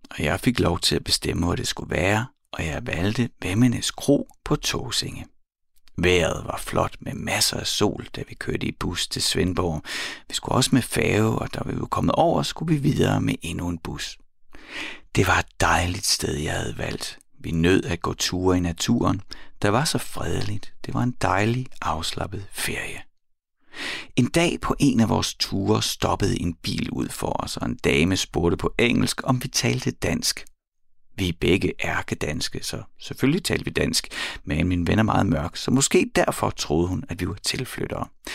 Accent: native